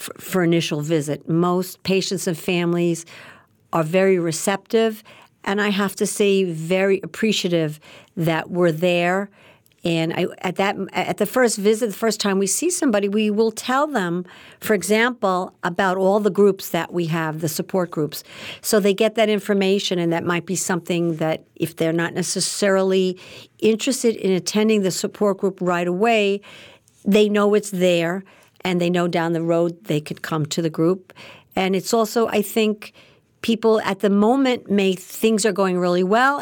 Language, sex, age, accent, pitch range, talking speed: English, female, 50-69, American, 175-210 Hz, 165 wpm